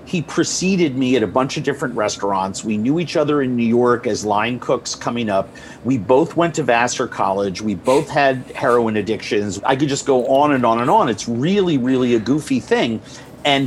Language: English